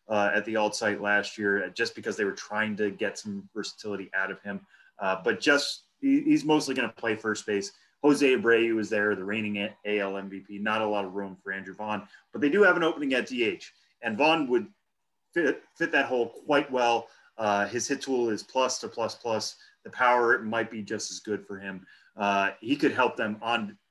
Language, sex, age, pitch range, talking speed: English, male, 30-49, 105-130 Hz, 220 wpm